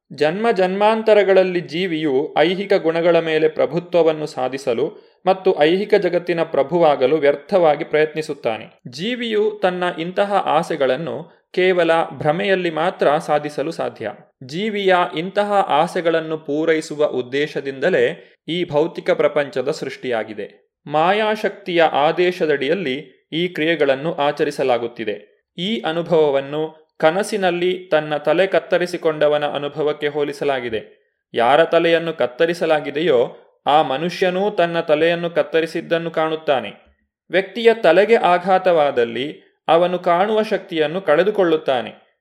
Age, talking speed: 30-49, 85 wpm